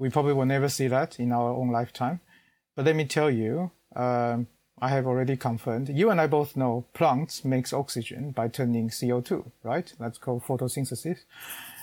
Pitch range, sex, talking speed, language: 125-150 Hz, male, 180 wpm, English